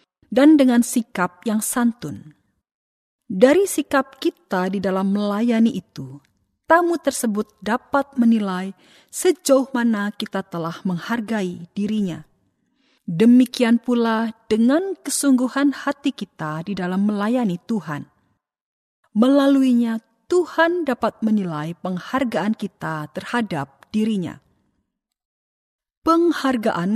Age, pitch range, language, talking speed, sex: 40-59, 195-270 Hz, Indonesian, 90 wpm, female